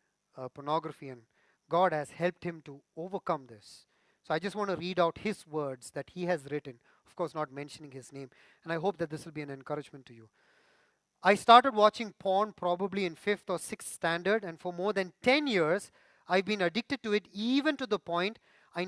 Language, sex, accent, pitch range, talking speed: English, male, Indian, 170-220 Hz, 210 wpm